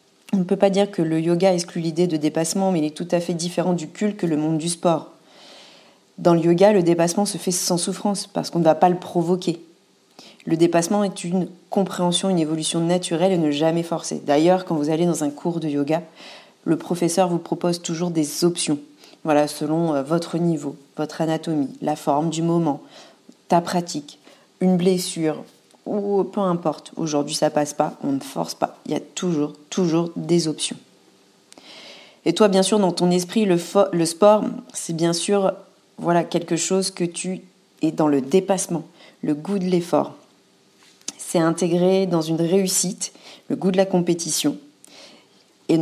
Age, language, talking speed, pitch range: 40-59, French, 185 wpm, 160-185 Hz